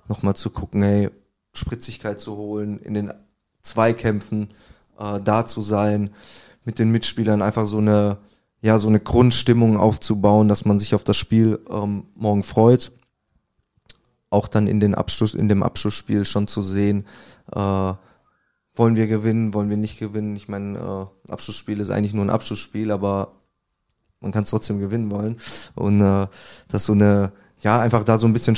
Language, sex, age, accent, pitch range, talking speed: German, male, 20-39, German, 105-115 Hz, 170 wpm